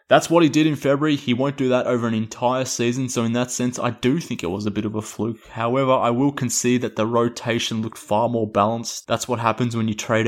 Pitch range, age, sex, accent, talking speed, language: 105-120 Hz, 20-39, male, Australian, 265 wpm, English